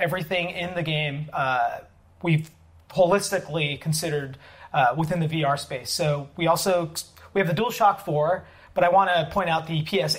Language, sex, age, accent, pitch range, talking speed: English, male, 30-49, American, 145-185 Hz, 170 wpm